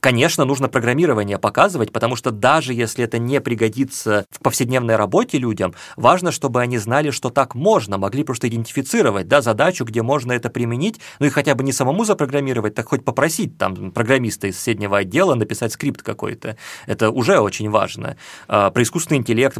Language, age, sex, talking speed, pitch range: Russian, 30-49, male, 170 wpm, 110-135 Hz